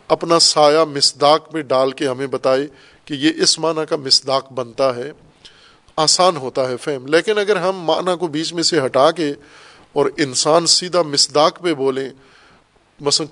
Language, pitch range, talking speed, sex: Urdu, 140-170 Hz, 165 wpm, male